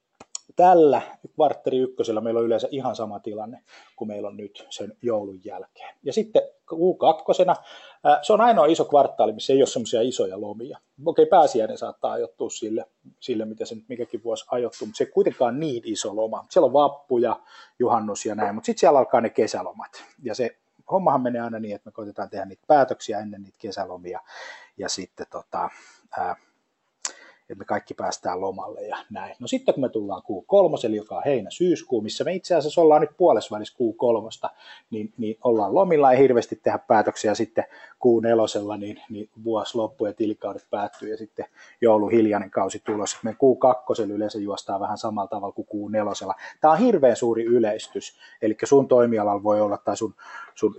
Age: 30-49